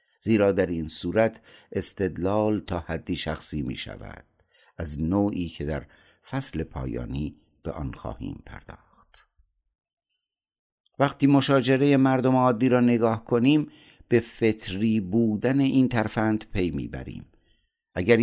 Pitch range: 90-120 Hz